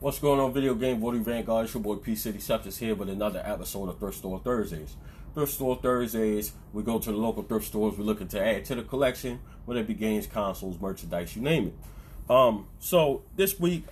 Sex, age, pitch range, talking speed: male, 30-49, 95-115 Hz, 210 wpm